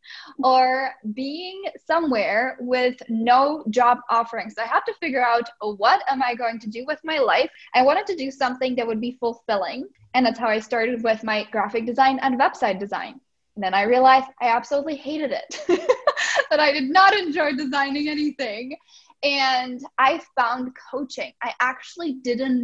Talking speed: 170 wpm